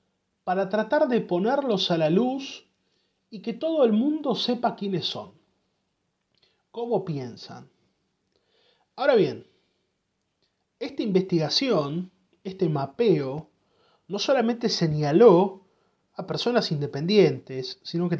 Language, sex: Spanish, male